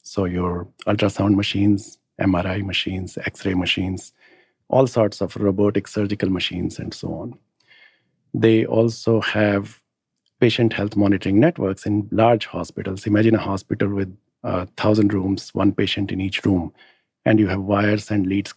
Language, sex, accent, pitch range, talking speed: English, male, Indian, 95-110 Hz, 145 wpm